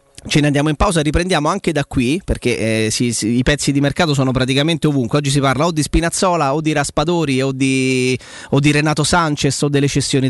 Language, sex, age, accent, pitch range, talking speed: Italian, male, 30-49, native, 130-175 Hz, 220 wpm